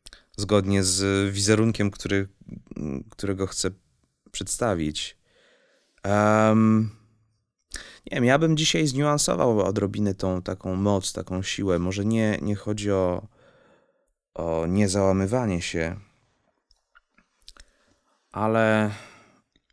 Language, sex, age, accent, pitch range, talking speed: Polish, male, 30-49, native, 90-105 Hz, 90 wpm